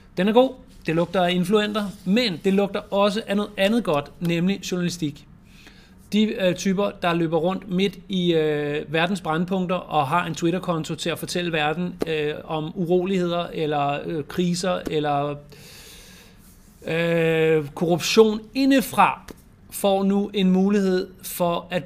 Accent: native